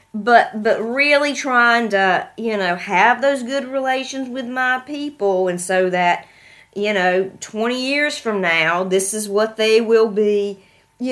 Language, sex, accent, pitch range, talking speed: English, female, American, 185-235 Hz, 160 wpm